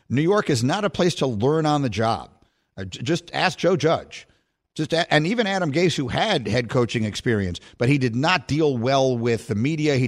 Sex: male